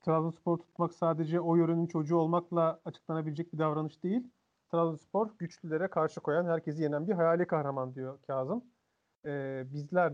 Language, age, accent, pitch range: Turkish, 40-59, native, 150-180 Hz